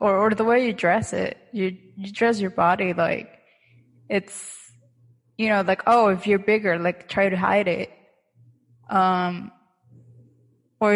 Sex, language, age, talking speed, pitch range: female, English, 20-39, 155 wpm, 135-200 Hz